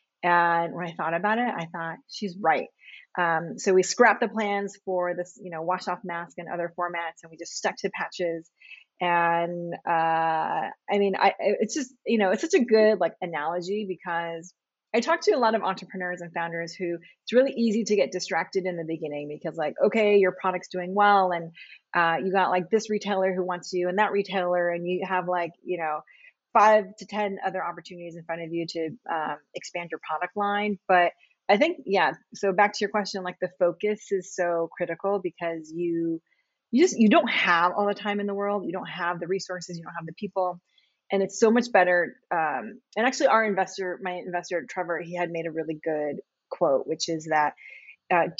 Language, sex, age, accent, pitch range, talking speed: English, female, 30-49, American, 170-205 Hz, 210 wpm